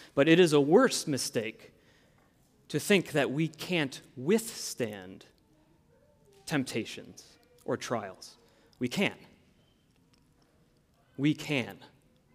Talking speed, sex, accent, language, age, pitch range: 90 wpm, male, American, English, 30-49, 145-195 Hz